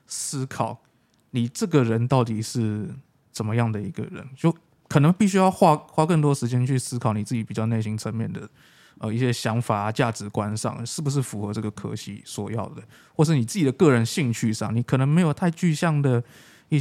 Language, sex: Chinese, male